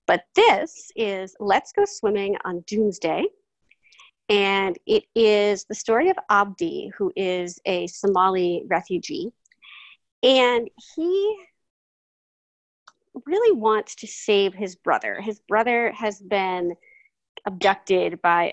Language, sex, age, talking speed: English, female, 30-49, 110 wpm